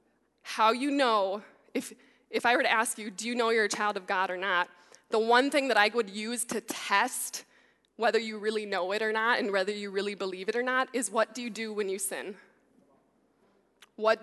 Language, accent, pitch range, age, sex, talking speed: English, American, 205-250 Hz, 20-39, female, 225 wpm